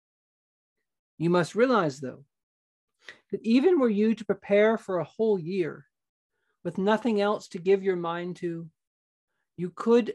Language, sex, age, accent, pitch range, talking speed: English, male, 40-59, American, 165-200 Hz, 140 wpm